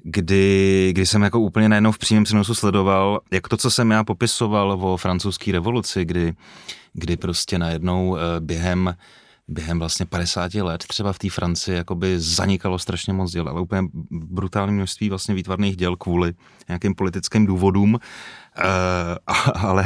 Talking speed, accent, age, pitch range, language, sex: 150 wpm, native, 30-49, 90-105 Hz, Czech, male